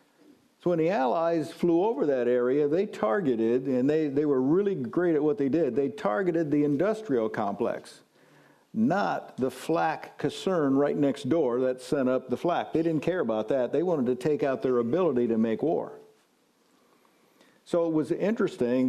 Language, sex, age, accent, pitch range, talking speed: English, male, 50-69, American, 125-170 Hz, 180 wpm